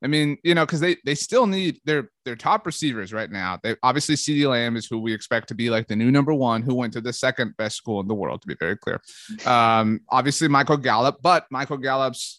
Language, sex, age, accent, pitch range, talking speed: English, male, 30-49, American, 115-155 Hz, 245 wpm